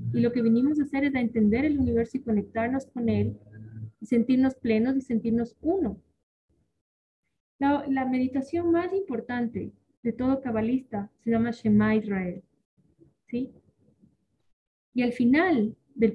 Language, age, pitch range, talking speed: Spanish, 20-39, 215-265 Hz, 140 wpm